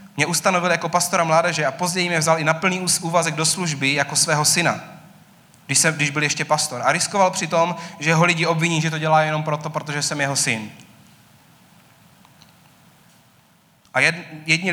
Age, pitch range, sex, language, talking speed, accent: 30-49, 135-165 Hz, male, Czech, 170 wpm, native